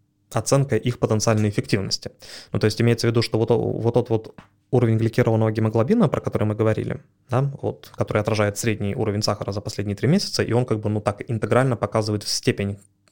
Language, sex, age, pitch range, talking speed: Russian, male, 20-39, 105-125 Hz, 190 wpm